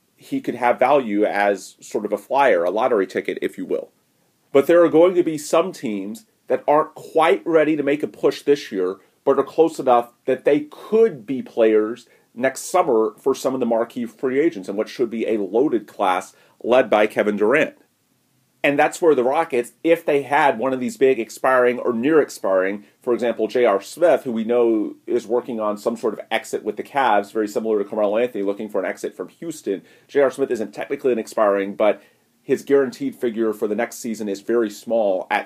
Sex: male